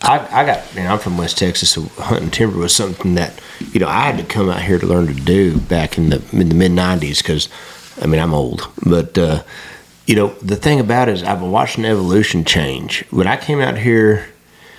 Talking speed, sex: 225 wpm, male